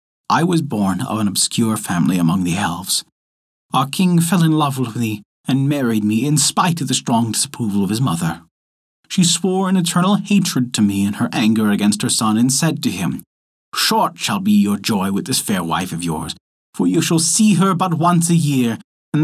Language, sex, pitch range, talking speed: English, male, 115-170 Hz, 210 wpm